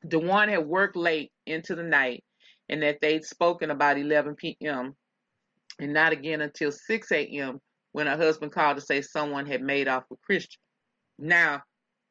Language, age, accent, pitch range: English, 30-49, American, 150-200 Hz